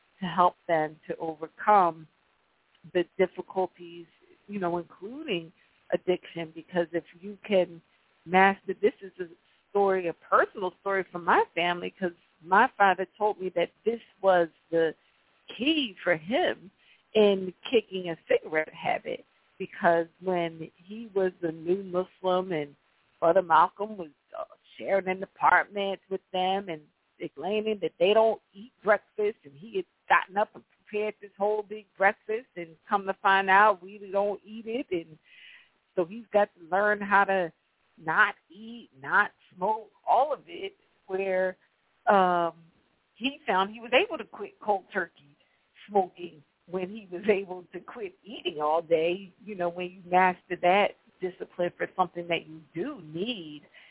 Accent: American